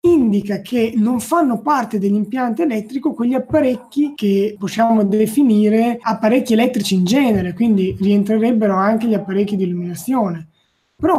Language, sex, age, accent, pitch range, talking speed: Italian, male, 20-39, native, 195-235 Hz, 130 wpm